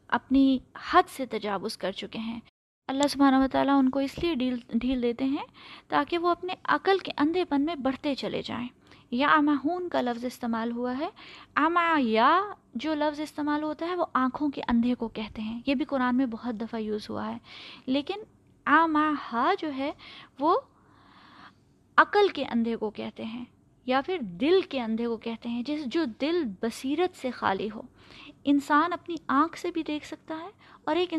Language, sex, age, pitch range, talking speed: Urdu, female, 20-39, 240-315 Hz, 180 wpm